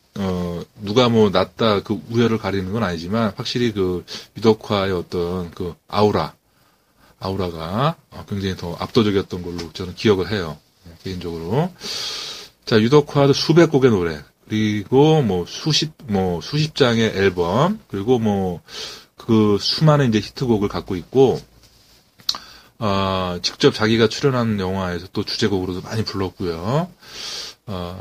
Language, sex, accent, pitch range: Korean, male, native, 95-120 Hz